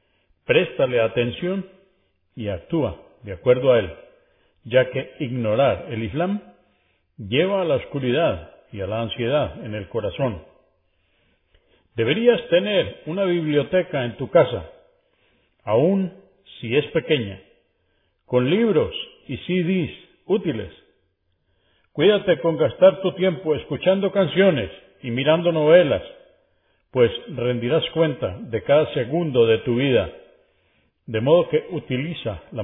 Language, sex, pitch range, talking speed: Spanish, male, 115-185 Hz, 120 wpm